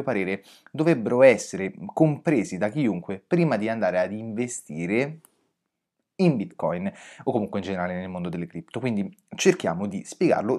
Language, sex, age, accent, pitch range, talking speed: Italian, male, 30-49, native, 100-140 Hz, 140 wpm